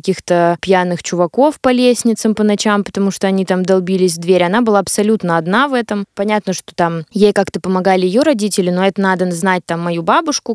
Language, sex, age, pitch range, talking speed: Russian, female, 20-39, 180-210 Hz, 200 wpm